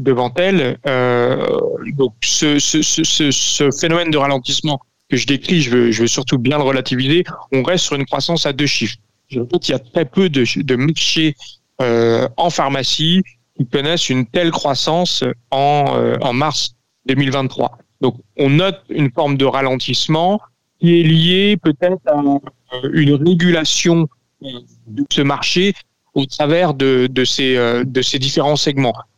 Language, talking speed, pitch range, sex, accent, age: French, 145 wpm, 125-155 Hz, male, French, 40-59